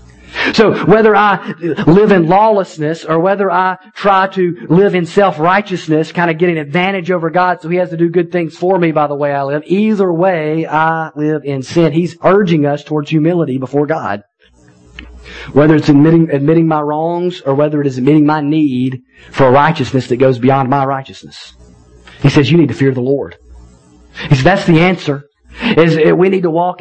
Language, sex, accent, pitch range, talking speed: English, male, American, 120-165 Hz, 195 wpm